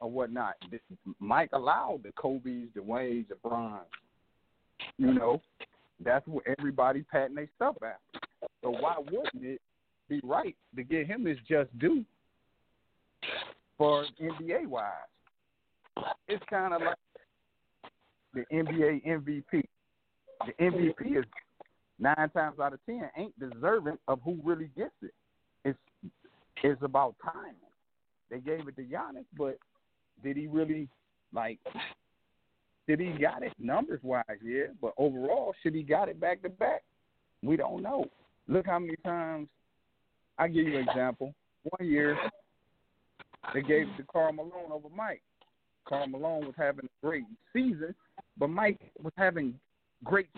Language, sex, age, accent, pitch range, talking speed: English, male, 50-69, American, 135-175 Hz, 140 wpm